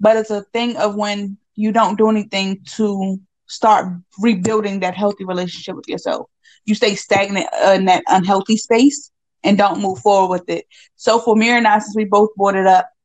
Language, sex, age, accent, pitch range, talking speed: English, female, 20-39, American, 195-230 Hz, 195 wpm